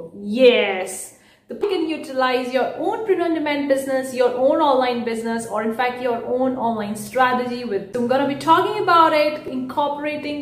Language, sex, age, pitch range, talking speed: English, female, 30-49, 235-315 Hz, 155 wpm